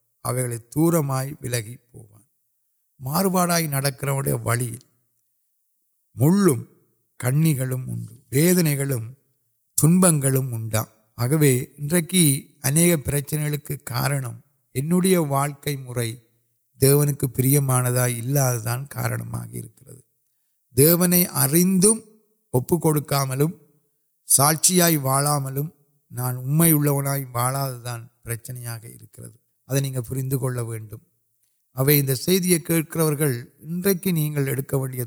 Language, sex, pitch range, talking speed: Urdu, male, 120-150 Hz, 50 wpm